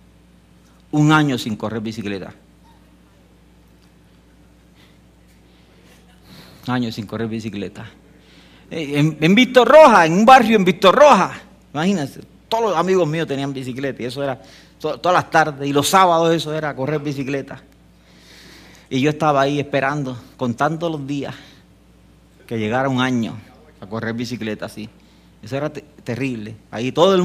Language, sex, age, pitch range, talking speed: English, male, 50-69, 115-170 Hz, 130 wpm